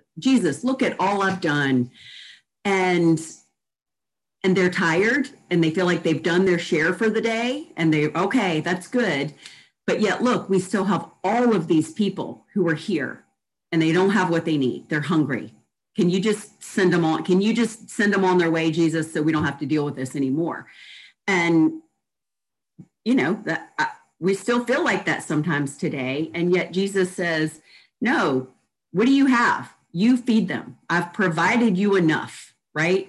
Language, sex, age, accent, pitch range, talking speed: English, female, 40-59, American, 165-220 Hz, 180 wpm